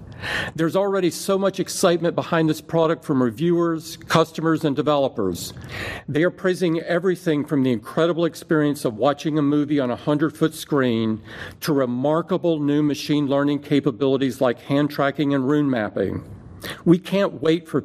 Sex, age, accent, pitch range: male, 50-69, American, 130-170 Hz